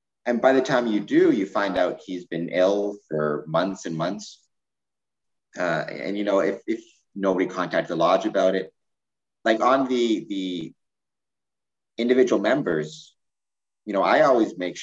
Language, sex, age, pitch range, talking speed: English, male, 30-49, 80-100 Hz, 160 wpm